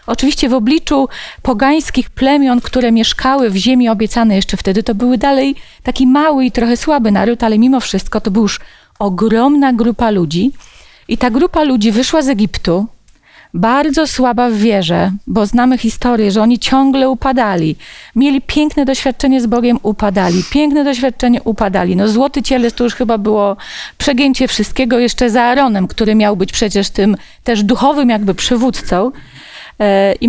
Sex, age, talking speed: female, 40-59, 155 wpm